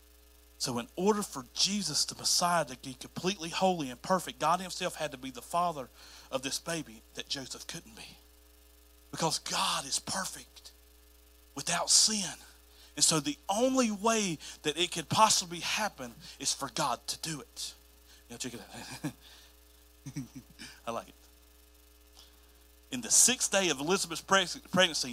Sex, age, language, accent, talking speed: male, 40-59, English, American, 150 wpm